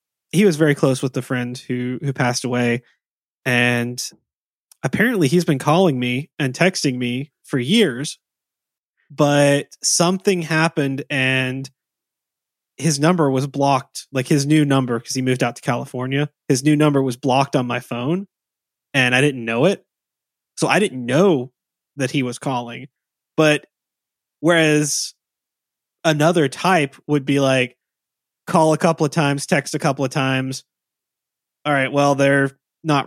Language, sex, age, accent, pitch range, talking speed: English, male, 20-39, American, 130-155 Hz, 150 wpm